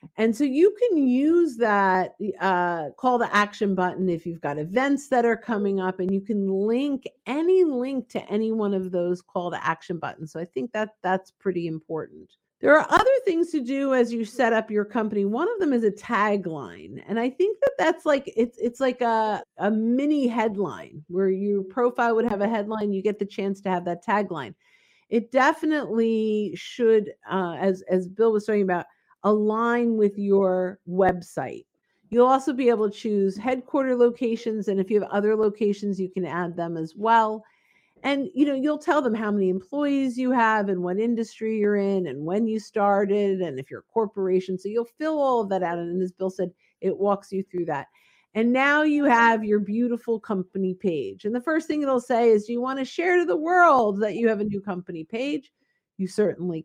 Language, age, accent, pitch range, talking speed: English, 50-69, American, 190-250 Hz, 205 wpm